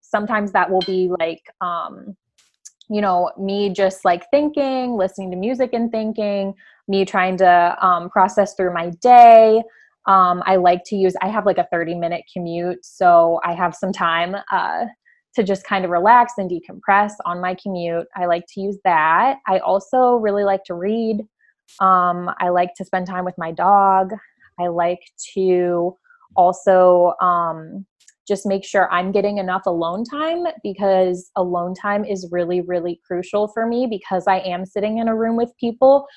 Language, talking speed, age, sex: English, 170 wpm, 20-39, female